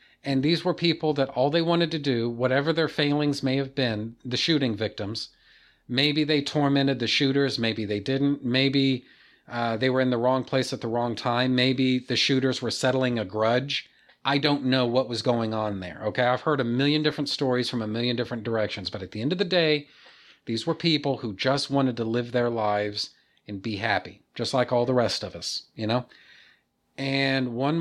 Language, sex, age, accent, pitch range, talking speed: English, male, 40-59, American, 115-140 Hz, 210 wpm